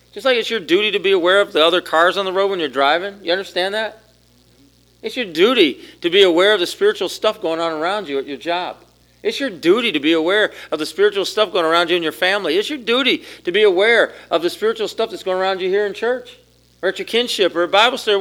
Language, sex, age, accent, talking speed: English, male, 40-59, American, 265 wpm